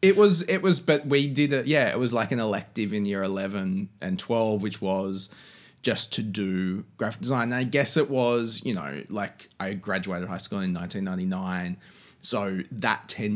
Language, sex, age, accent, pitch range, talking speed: English, male, 20-39, Australian, 95-120 Hz, 190 wpm